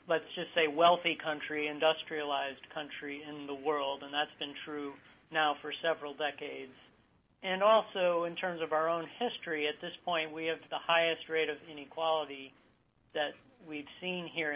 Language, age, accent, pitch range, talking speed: English, 40-59, American, 145-165 Hz, 165 wpm